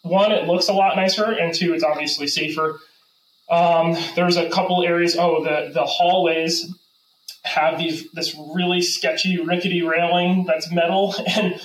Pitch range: 155-180 Hz